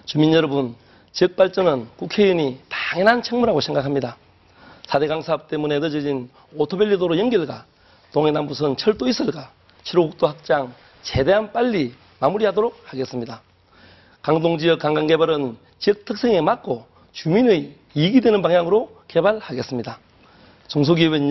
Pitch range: 135-195 Hz